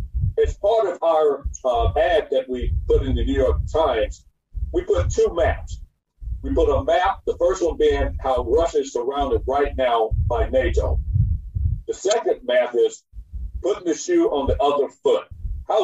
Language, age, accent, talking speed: English, 50-69, American, 175 wpm